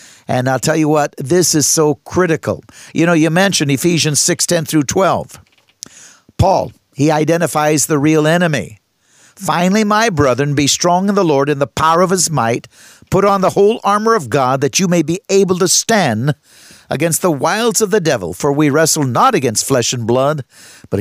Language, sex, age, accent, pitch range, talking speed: English, male, 50-69, American, 145-190 Hz, 190 wpm